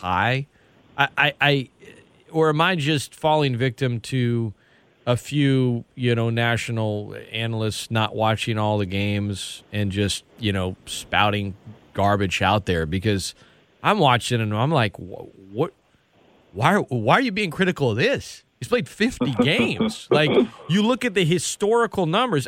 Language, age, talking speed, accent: English, 30-49, 145 wpm, American